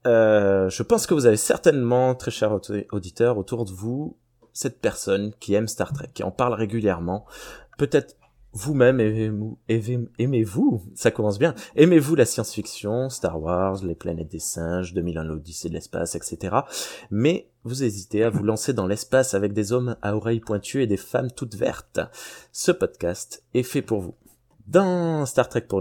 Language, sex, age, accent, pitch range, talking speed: French, male, 20-39, French, 105-130 Hz, 170 wpm